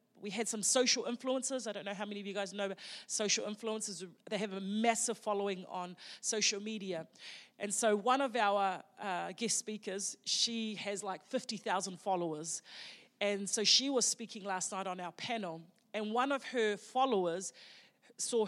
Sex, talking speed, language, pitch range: female, 170 wpm, English, 195-240 Hz